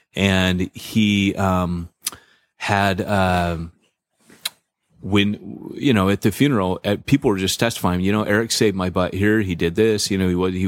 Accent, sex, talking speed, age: American, male, 180 wpm, 30-49